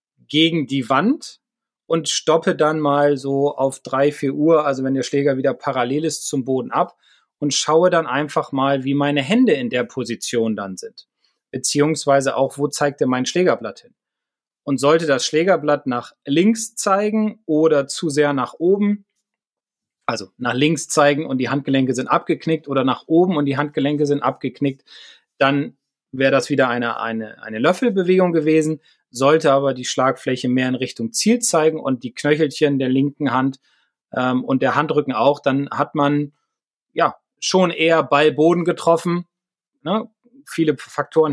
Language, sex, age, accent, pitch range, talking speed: German, male, 30-49, German, 130-160 Hz, 165 wpm